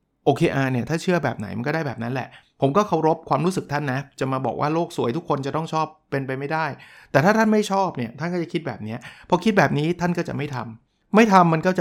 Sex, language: male, Thai